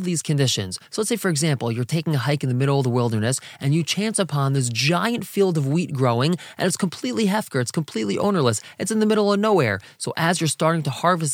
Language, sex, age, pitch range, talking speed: English, male, 20-39, 135-185 Hz, 245 wpm